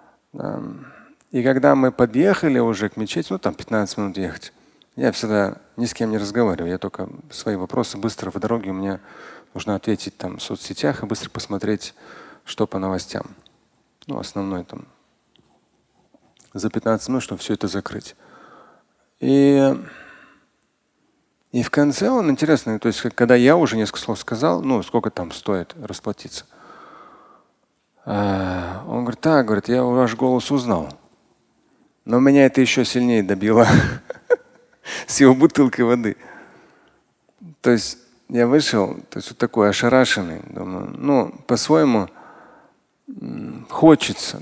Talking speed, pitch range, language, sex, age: 135 wpm, 100-130 Hz, Russian, male, 40-59